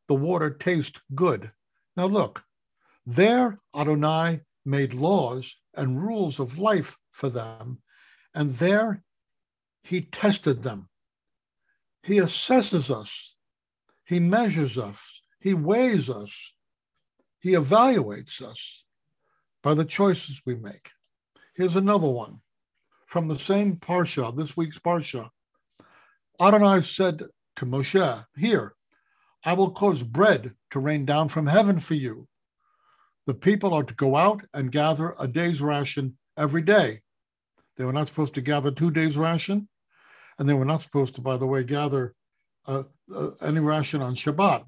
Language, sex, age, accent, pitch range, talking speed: English, male, 60-79, American, 135-185 Hz, 135 wpm